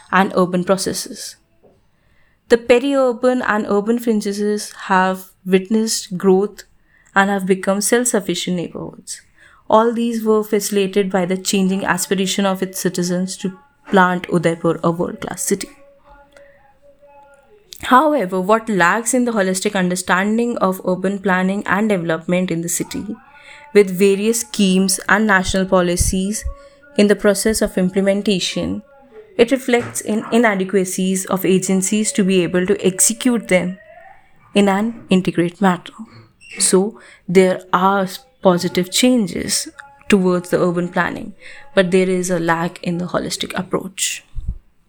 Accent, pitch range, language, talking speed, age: Indian, 185-235 Hz, English, 125 wpm, 20-39